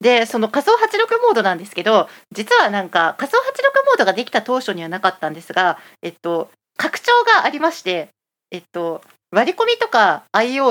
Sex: female